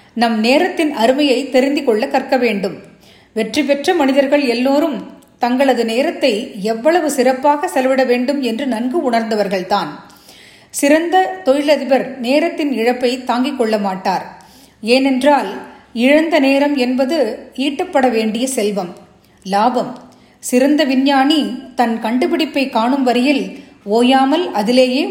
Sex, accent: female, native